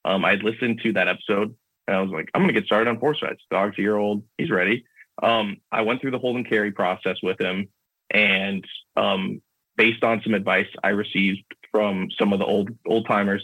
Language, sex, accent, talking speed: English, male, American, 225 wpm